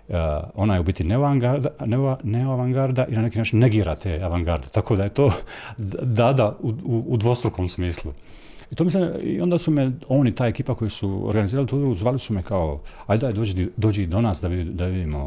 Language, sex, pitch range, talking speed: Croatian, male, 90-135 Hz, 200 wpm